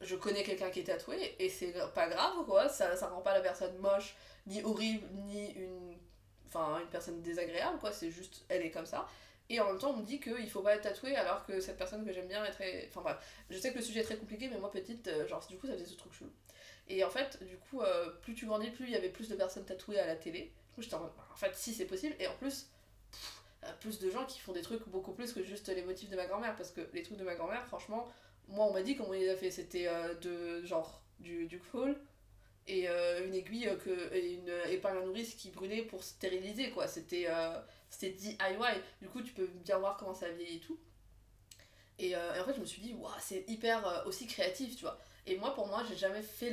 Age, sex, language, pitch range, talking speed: 20-39, female, French, 180-220 Hz, 265 wpm